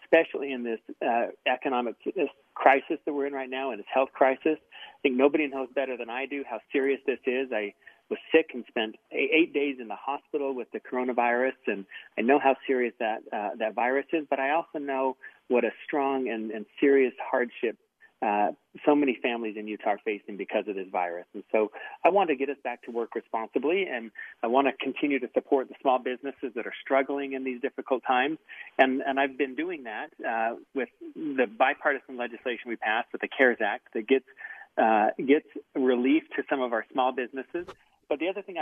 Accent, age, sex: American, 40-59, male